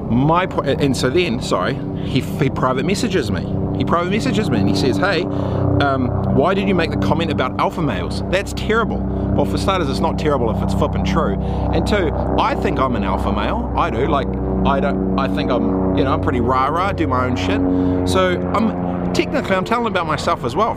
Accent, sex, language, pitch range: Australian, male, English, 100-145 Hz